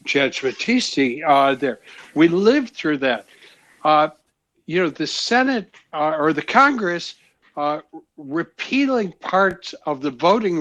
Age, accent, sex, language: 60-79, American, male, English